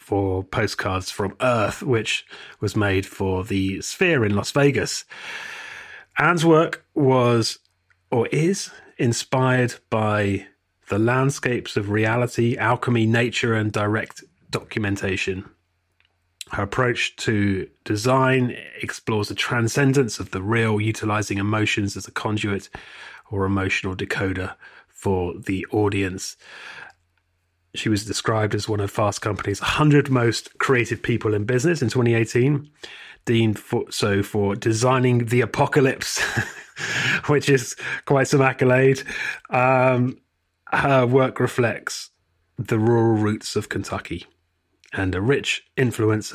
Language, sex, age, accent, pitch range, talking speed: English, male, 30-49, British, 100-130 Hz, 120 wpm